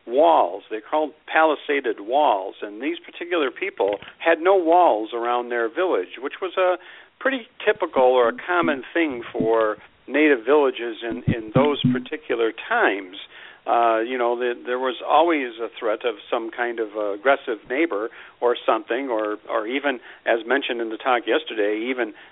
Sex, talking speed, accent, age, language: male, 160 wpm, American, 50-69, English